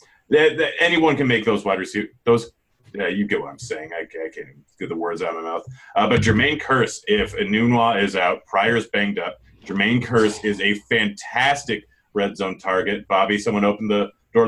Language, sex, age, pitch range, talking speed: English, male, 30-49, 100-135 Hz, 205 wpm